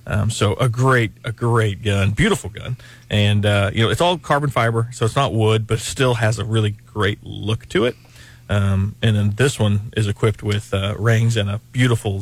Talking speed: 210 wpm